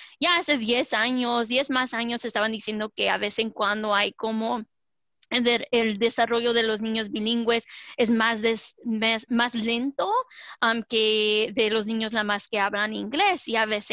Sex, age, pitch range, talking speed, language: female, 20-39, 220-245 Hz, 180 wpm, English